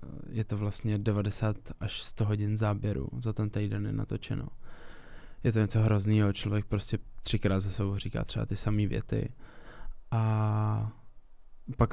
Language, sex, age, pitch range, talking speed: Czech, male, 20-39, 100-110 Hz, 145 wpm